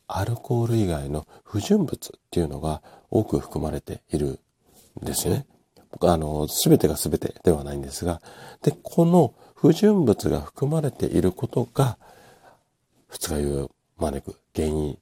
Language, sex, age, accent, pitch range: Japanese, male, 50-69, native, 80-120 Hz